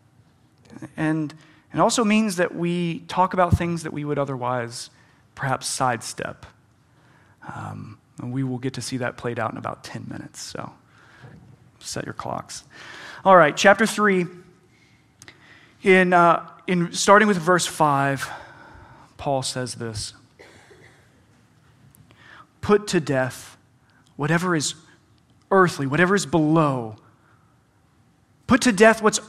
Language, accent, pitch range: English, American, 135-185 Hz